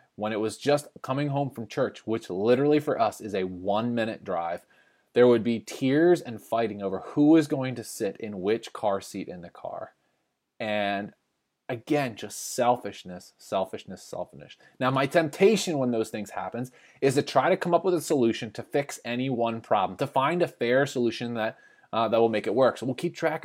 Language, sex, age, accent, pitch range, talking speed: English, male, 20-39, American, 115-150 Hz, 200 wpm